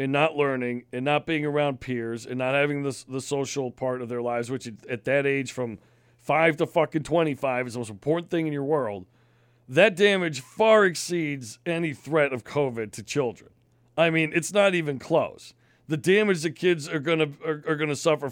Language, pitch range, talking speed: English, 130-165 Hz, 205 wpm